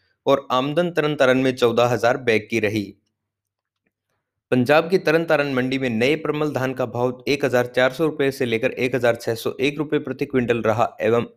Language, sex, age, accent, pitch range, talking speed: Hindi, male, 20-39, native, 120-145 Hz, 160 wpm